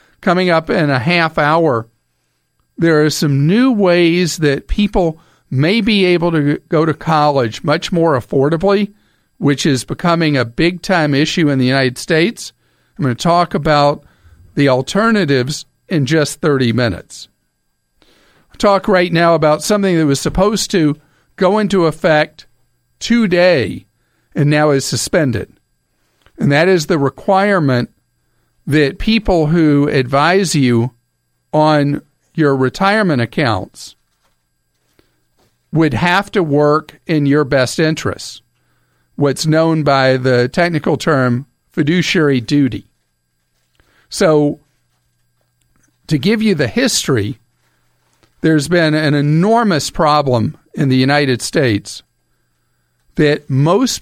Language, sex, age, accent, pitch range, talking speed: English, male, 50-69, American, 130-175 Hz, 120 wpm